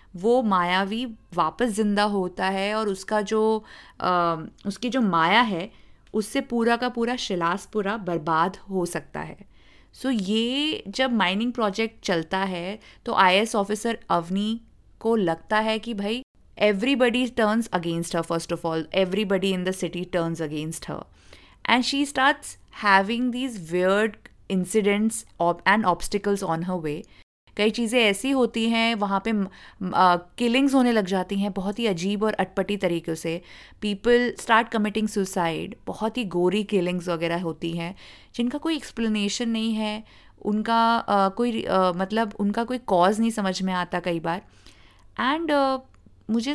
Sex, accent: female, native